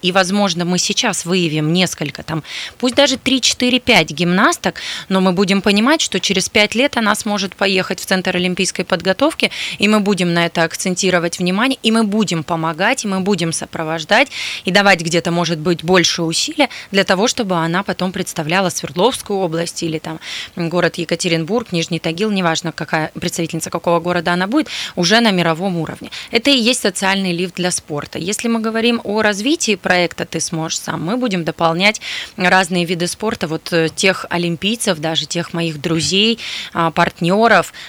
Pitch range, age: 170-210 Hz, 20-39